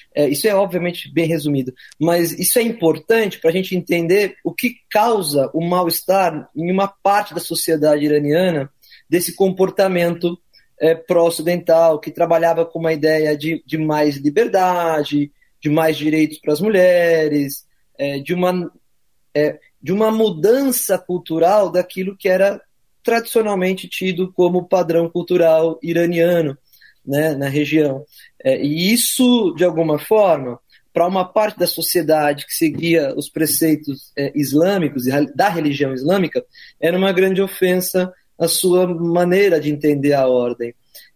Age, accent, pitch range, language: 20-39, Brazilian, 150-190 Hz, Portuguese